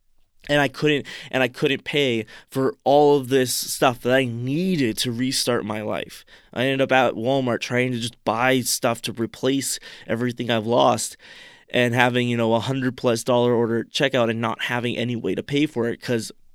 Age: 20-39